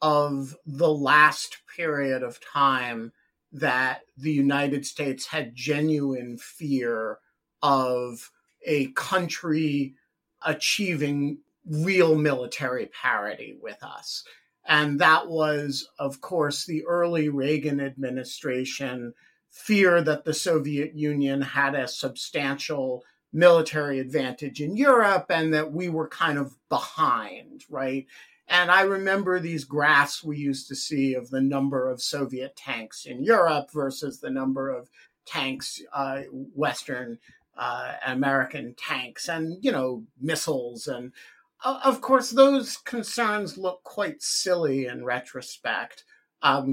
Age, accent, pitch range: 50-69, American, 135-165 Hz